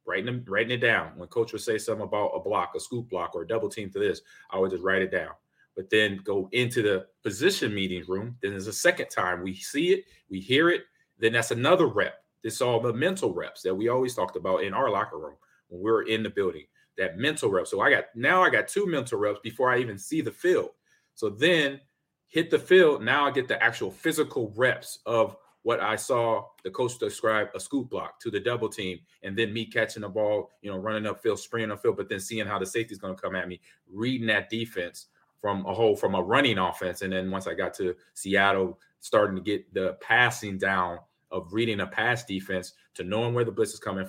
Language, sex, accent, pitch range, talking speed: English, male, American, 95-125 Hz, 235 wpm